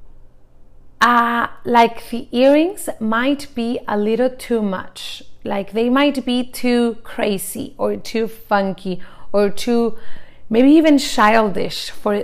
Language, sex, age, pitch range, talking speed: English, female, 30-49, 200-255 Hz, 125 wpm